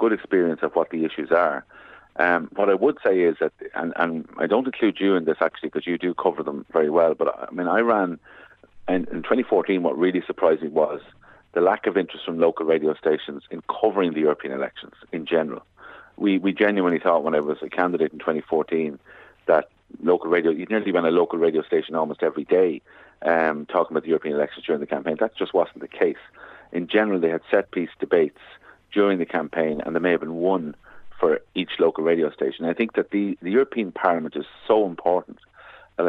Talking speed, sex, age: 210 wpm, male, 40-59